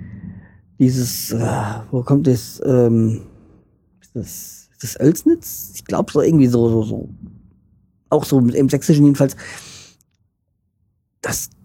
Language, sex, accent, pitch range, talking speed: German, male, German, 110-145 Hz, 120 wpm